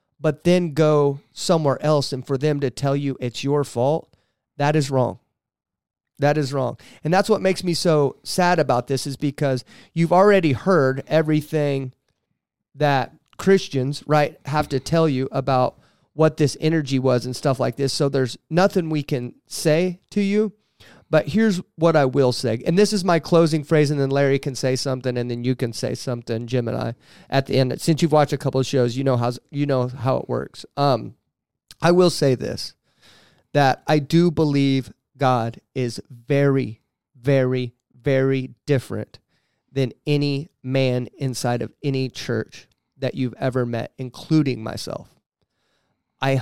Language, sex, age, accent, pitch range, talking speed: English, male, 30-49, American, 130-155 Hz, 170 wpm